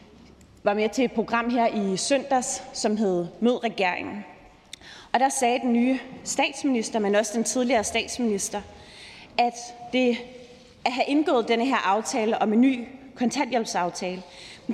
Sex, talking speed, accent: female, 145 wpm, native